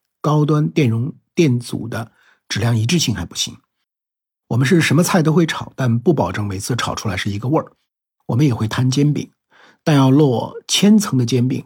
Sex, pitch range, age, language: male, 115-150 Hz, 50-69, Chinese